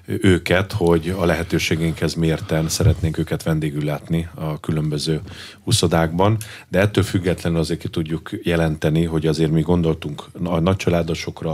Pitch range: 85-95 Hz